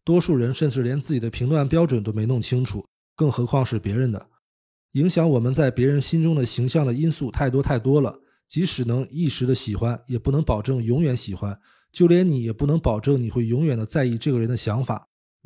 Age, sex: 20-39, male